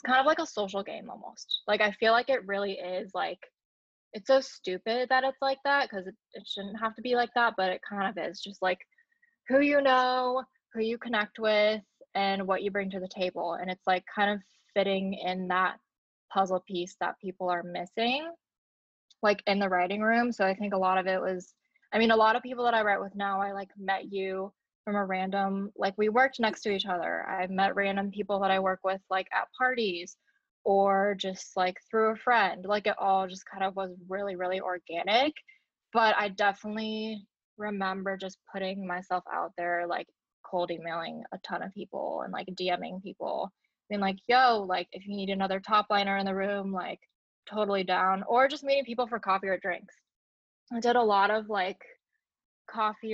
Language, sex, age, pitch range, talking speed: English, female, 10-29, 190-225 Hz, 205 wpm